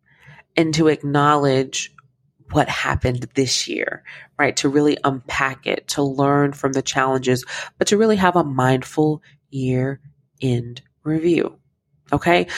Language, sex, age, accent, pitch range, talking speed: English, female, 30-49, American, 130-155 Hz, 130 wpm